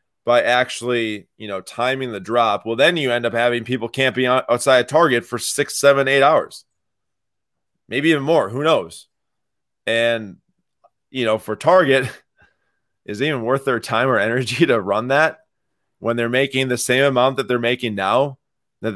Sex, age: male, 20-39